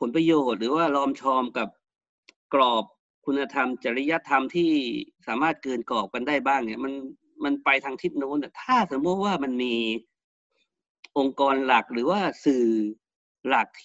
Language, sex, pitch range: Thai, male, 125-185 Hz